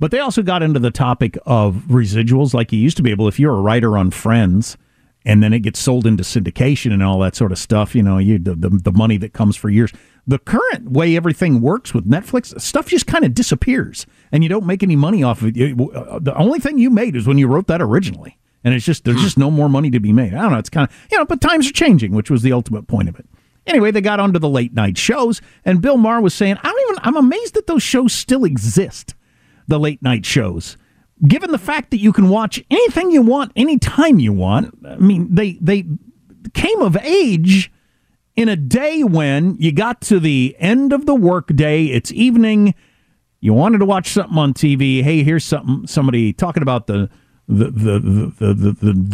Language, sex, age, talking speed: English, male, 50-69, 225 wpm